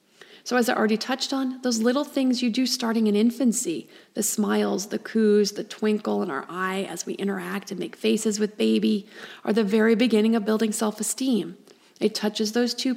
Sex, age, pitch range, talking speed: female, 30-49, 200-240 Hz, 195 wpm